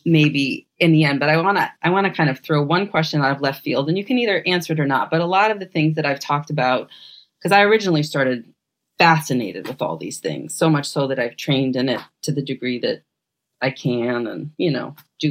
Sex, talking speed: female, 255 wpm